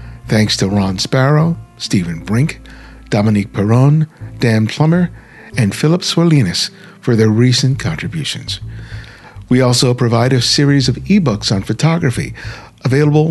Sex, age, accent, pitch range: male, 50-69, American, 110-140 Hz